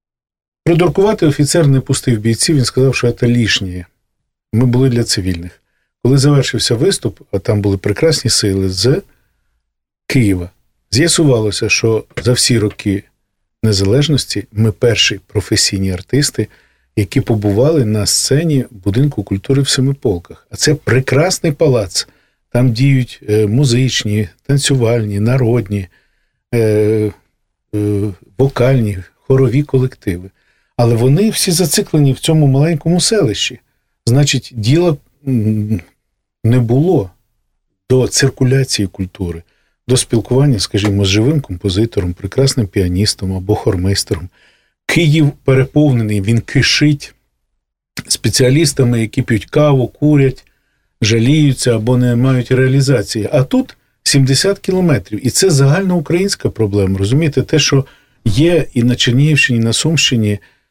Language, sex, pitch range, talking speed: Russian, male, 105-140 Hz, 110 wpm